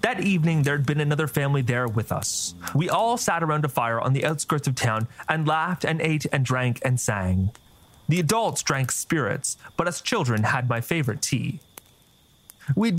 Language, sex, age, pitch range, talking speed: English, male, 30-49, 120-165 Hz, 185 wpm